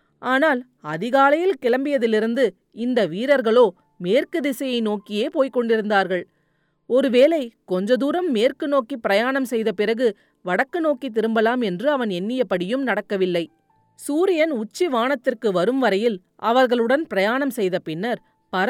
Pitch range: 200-270 Hz